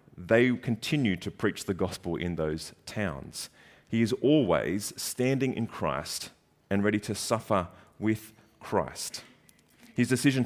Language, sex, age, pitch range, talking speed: English, male, 30-49, 105-145 Hz, 130 wpm